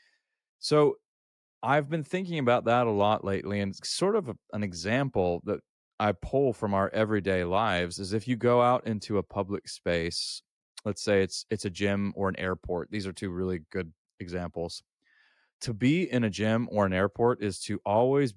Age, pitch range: 30-49, 95-125 Hz